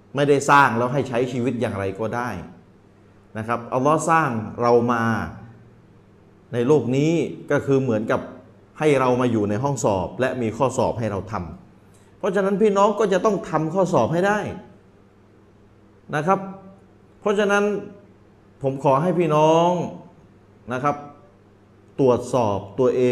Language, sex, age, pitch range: Thai, male, 30-49, 105-165 Hz